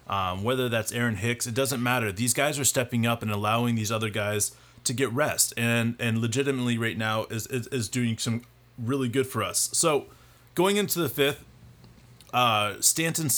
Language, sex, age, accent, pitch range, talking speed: English, male, 30-49, American, 115-135 Hz, 190 wpm